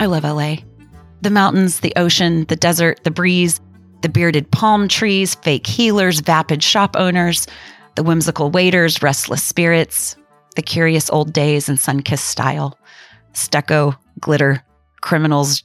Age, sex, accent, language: 30-49, female, American, English